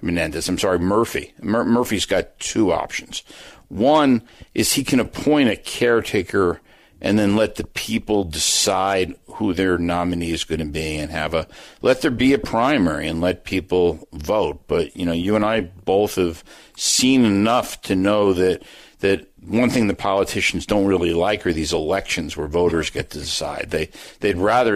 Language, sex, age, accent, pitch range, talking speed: English, male, 60-79, American, 85-105 Hz, 175 wpm